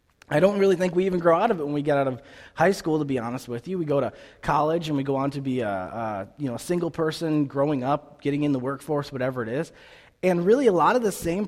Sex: male